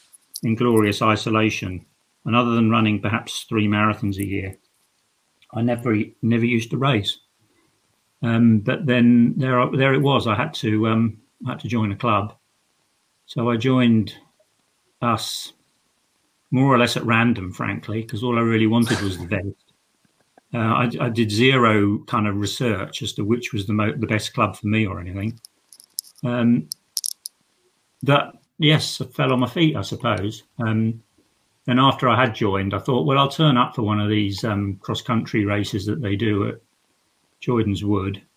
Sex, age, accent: male, 50-69, British